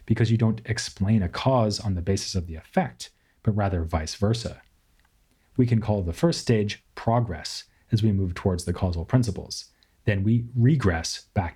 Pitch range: 90-115 Hz